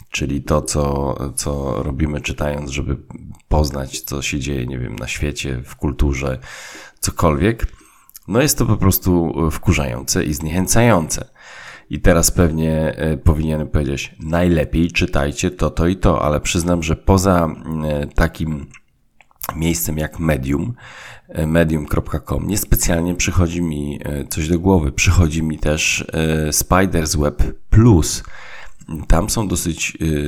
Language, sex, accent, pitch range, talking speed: Polish, male, native, 75-90 Hz, 125 wpm